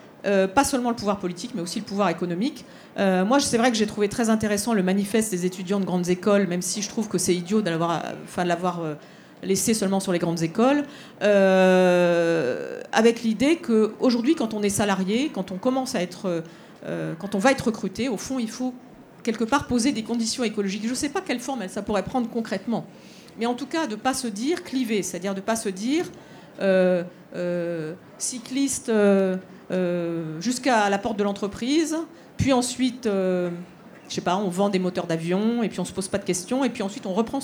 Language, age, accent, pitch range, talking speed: French, 50-69, French, 185-240 Hz, 210 wpm